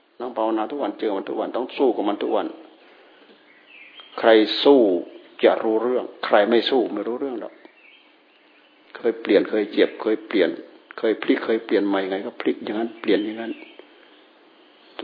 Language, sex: Thai, male